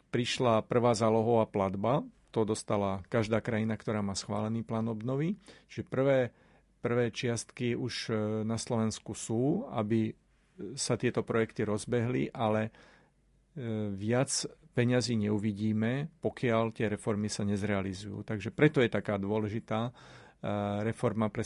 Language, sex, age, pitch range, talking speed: Slovak, male, 50-69, 110-120 Hz, 115 wpm